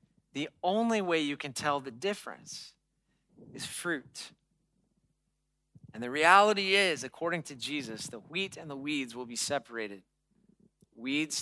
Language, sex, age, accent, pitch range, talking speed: English, male, 40-59, American, 125-170 Hz, 135 wpm